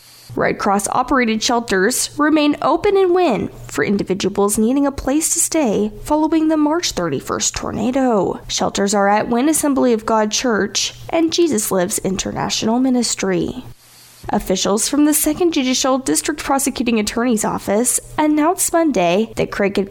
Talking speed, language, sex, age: 135 wpm, English, female, 10-29